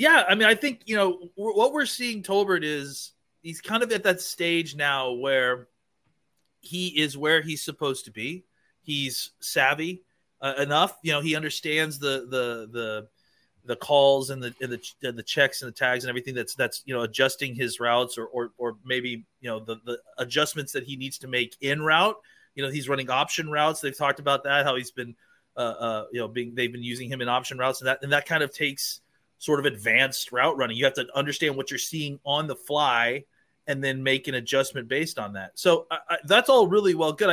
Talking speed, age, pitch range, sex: 215 wpm, 30-49, 130-170 Hz, male